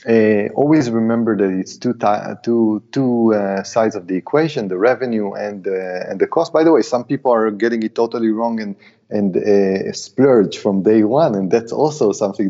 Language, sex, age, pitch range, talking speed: English, male, 30-49, 100-130 Hz, 180 wpm